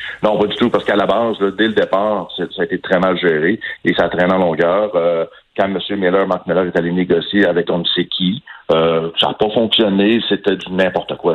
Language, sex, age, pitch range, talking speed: French, male, 60-79, 95-110 Hz, 245 wpm